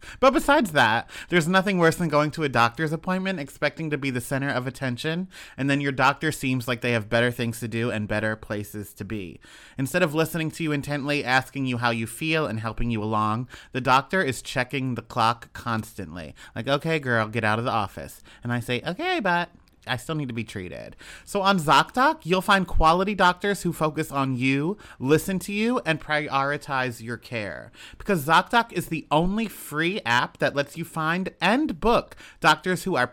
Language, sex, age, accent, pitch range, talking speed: English, male, 30-49, American, 125-175 Hz, 200 wpm